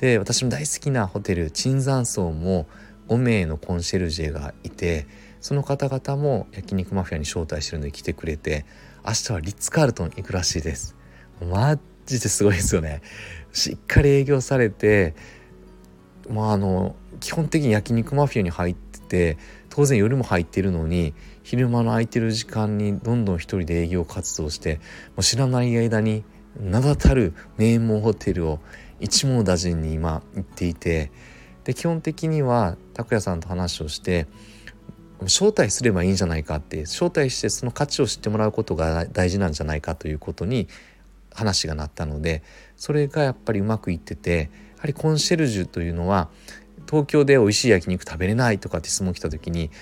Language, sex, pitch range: Japanese, male, 85-120 Hz